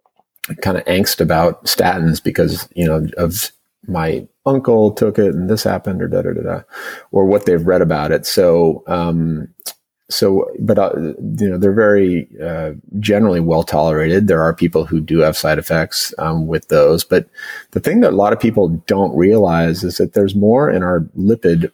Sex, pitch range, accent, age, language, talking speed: male, 80-95 Hz, American, 30-49, English, 185 wpm